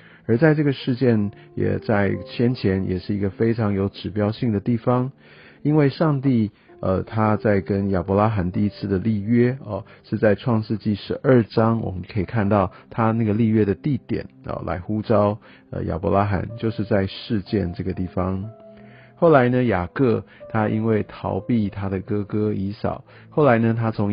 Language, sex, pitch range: Chinese, male, 95-115 Hz